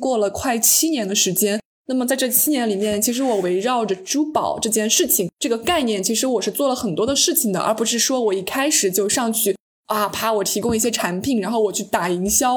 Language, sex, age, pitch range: Chinese, female, 20-39, 210-275 Hz